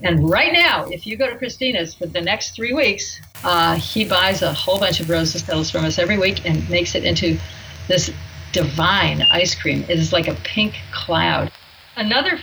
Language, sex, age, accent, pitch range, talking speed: English, female, 50-69, American, 160-205 Hz, 200 wpm